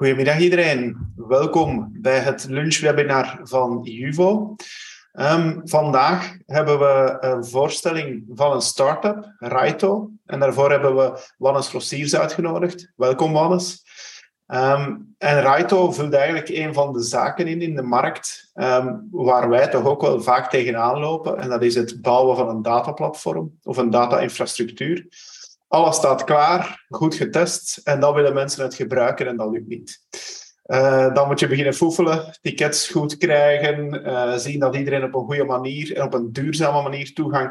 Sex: male